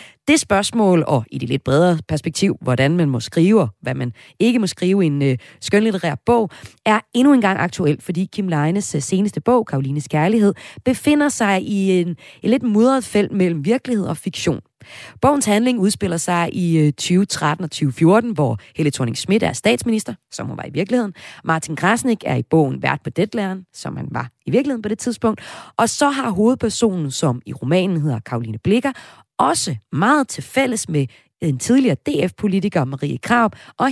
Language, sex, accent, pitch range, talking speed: Danish, female, native, 155-230 Hz, 175 wpm